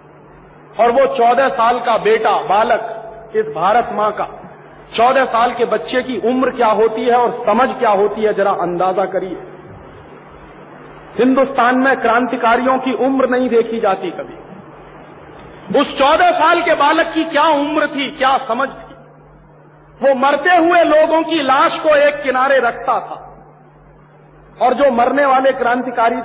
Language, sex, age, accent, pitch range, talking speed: Hindi, male, 50-69, native, 225-275 Hz, 150 wpm